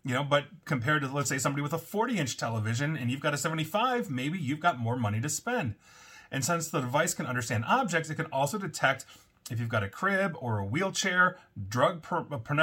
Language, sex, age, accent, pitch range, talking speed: English, male, 30-49, American, 125-175 Hz, 215 wpm